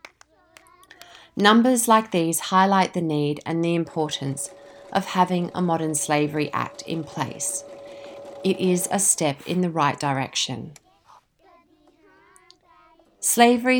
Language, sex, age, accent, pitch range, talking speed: English, female, 30-49, Australian, 150-190 Hz, 115 wpm